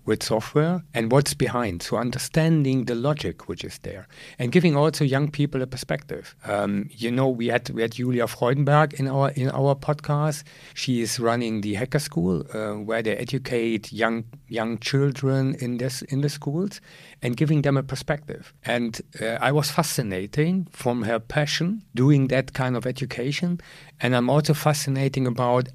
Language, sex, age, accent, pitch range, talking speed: German, male, 50-69, German, 120-150 Hz, 170 wpm